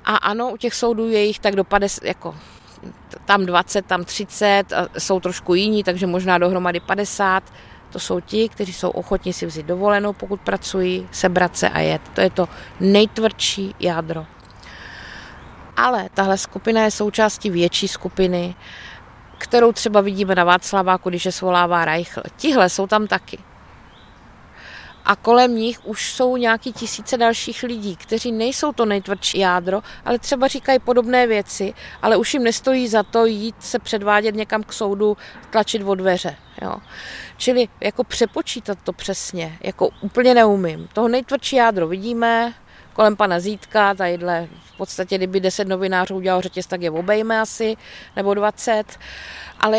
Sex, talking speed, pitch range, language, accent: female, 155 wpm, 185-225 Hz, Czech, native